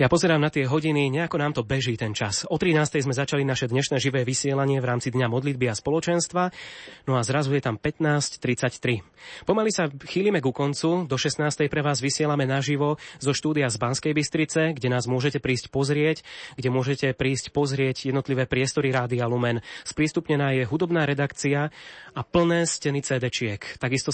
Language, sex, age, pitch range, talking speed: Slovak, male, 20-39, 130-155 Hz, 170 wpm